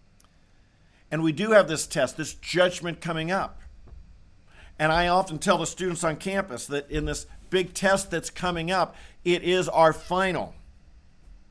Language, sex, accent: English, male, American